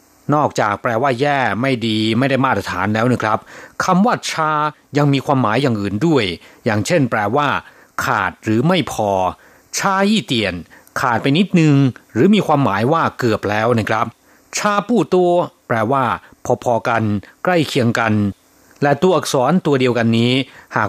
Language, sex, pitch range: Thai, male, 110-155 Hz